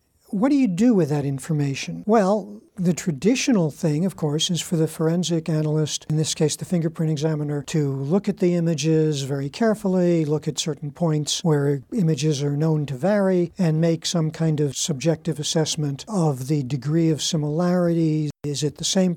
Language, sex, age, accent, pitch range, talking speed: English, male, 60-79, American, 155-195 Hz, 180 wpm